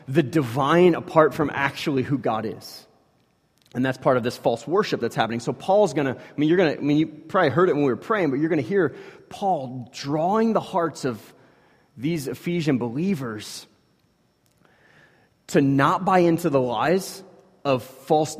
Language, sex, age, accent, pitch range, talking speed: English, male, 30-49, American, 130-170 Hz, 175 wpm